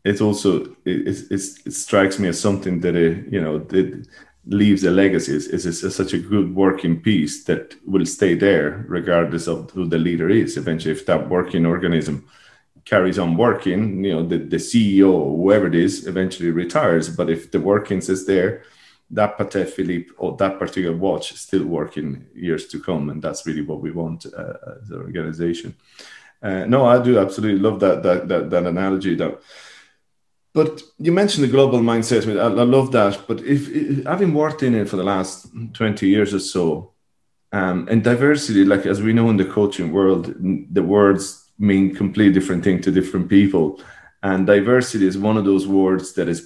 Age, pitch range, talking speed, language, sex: 30-49, 90-105 Hz, 190 wpm, English, male